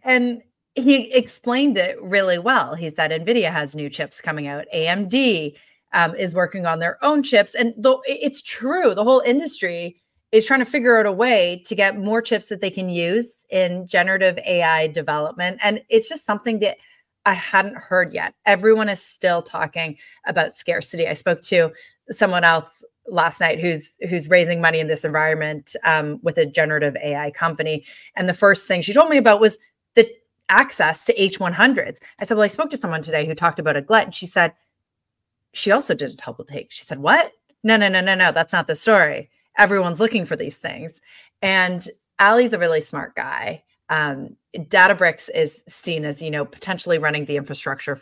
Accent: American